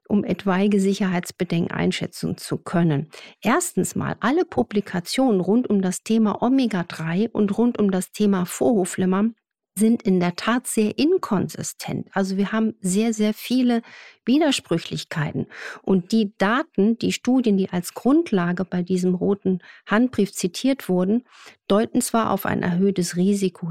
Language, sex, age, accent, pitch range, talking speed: German, female, 50-69, German, 185-225 Hz, 135 wpm